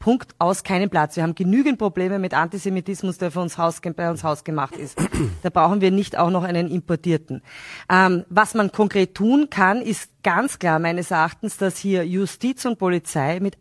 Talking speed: 195 wpm